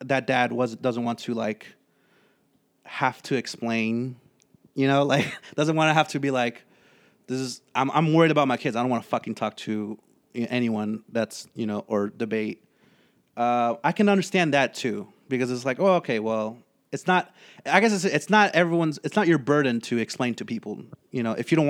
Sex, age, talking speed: male, 30-49, 205 wpm